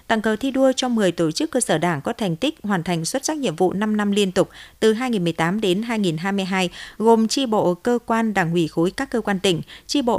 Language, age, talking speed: Vietnamese, 50-69, 245 wpm